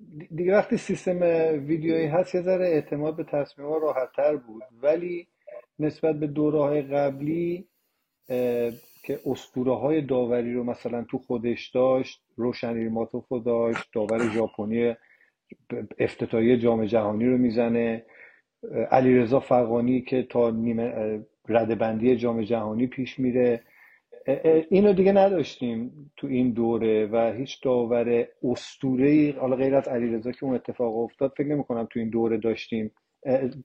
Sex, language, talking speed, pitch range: male, Persian, 130 wpm, 115-150 Hz